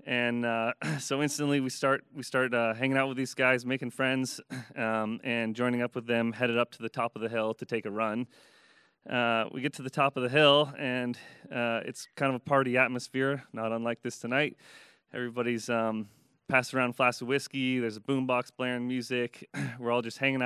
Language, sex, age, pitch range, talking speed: English, male, 30-49, 115-135 Hz, 210 wpm